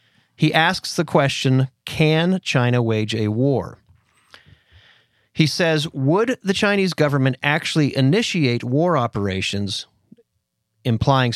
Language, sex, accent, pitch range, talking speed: English, male, American, 110-150 Hz, 105 wpm